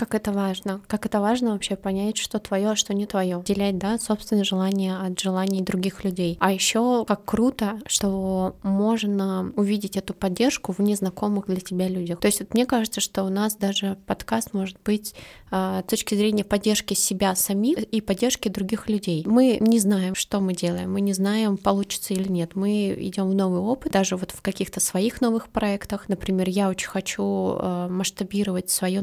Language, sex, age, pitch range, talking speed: Russian, female, 20-39, 185-210 Hz, 185 wpm